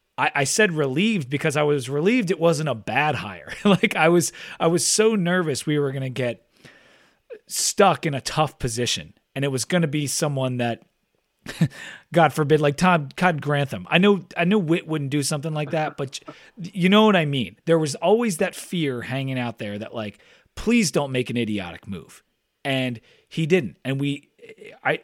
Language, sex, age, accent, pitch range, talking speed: English, male, 30-49, American, 130-170 Hz, 190 wpm